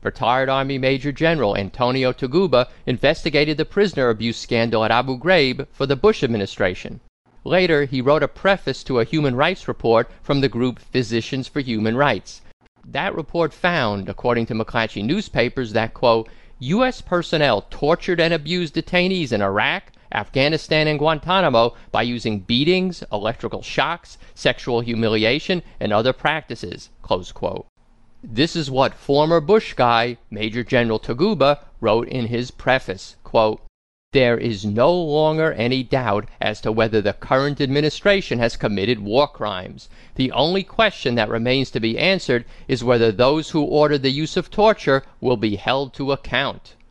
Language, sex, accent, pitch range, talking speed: English, male, American, 115-155 Hz, 150 wpm